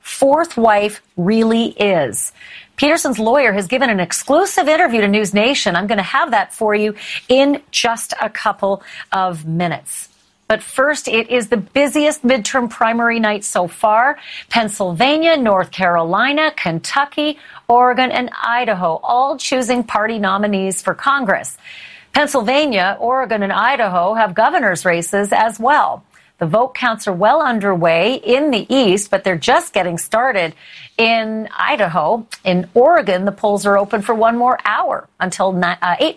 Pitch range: 195-260 Hz